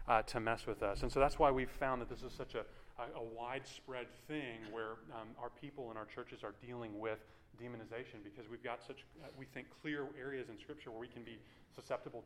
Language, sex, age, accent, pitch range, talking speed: English, male, 30-49, American, 115-140 Hz, 225 wpm